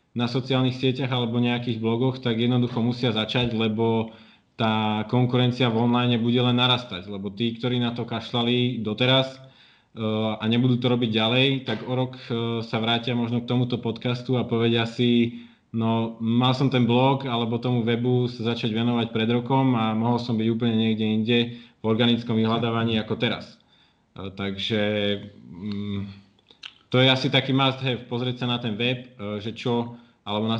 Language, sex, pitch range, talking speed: Slovak, male, 110-125 Hz, 175 wpm